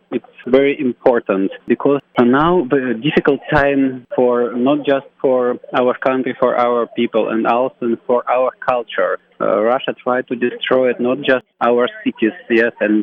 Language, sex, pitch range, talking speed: English, male, 115-135 Hz, 155 wpm